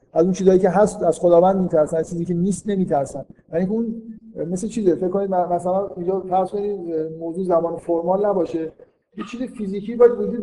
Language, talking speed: Persian, 165 wpm